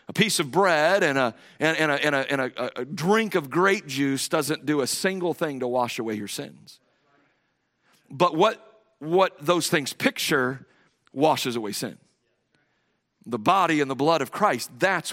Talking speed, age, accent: 175 wpm, 50-69, American